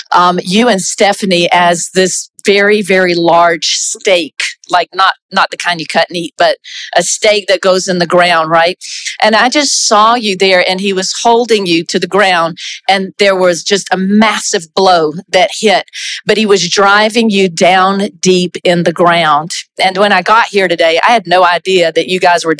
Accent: American